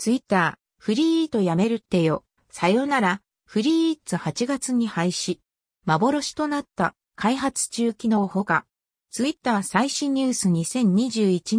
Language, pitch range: Japanese, 185-265 Hz